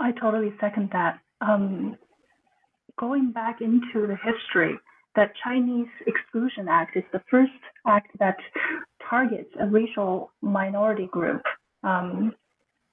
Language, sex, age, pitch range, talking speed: English, female, 30-49, 200-245 Hz, 115 wpm